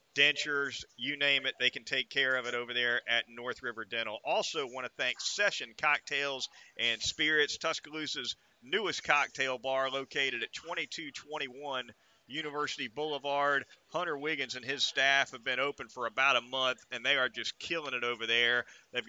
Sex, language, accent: male, English, American